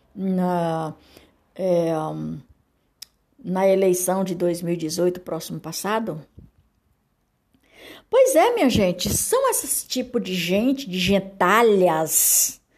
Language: Portuguese